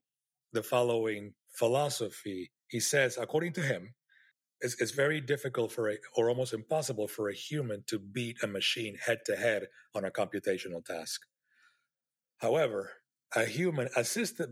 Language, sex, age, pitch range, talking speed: English, male, 40-59, 110-140 Hz, 135 wpm